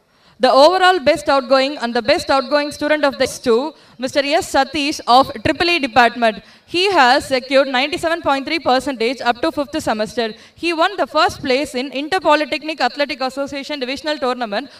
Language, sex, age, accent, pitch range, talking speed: Tamil, female, 20-39, native, 245-305 Hz, 160 wpm